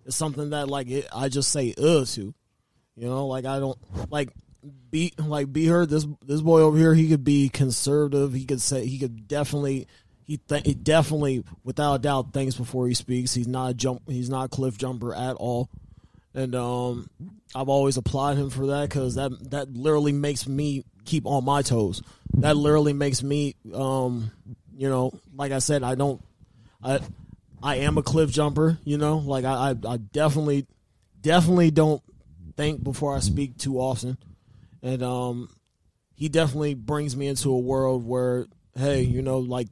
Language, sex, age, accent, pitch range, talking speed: English, male, 20-39, American, 125-145 Hz, 185 wpm